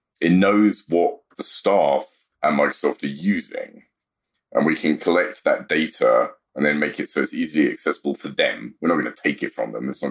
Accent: British